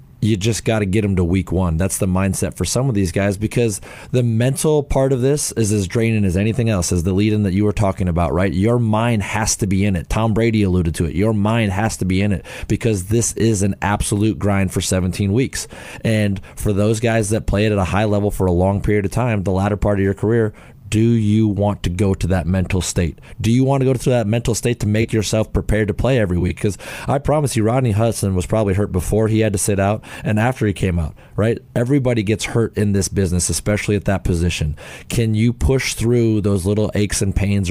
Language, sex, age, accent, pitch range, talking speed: English, male, 30-49, American, 95-115 Hz, 245 wpm